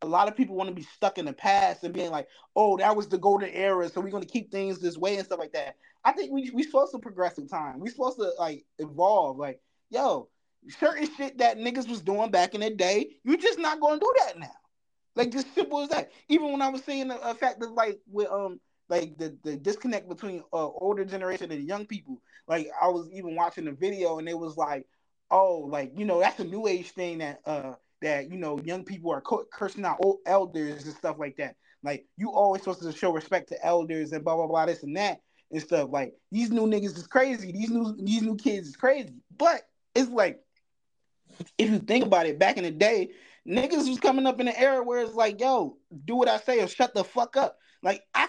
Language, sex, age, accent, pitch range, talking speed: English, male, 20-39, American, 175-250 Hz, 240 wpm